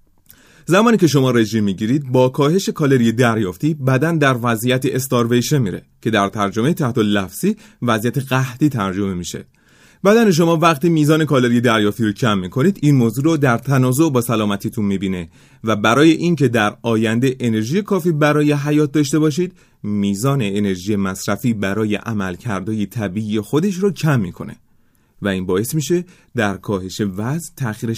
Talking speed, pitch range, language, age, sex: 150 wpm, 105-155 Hz, Persian, 30-49, male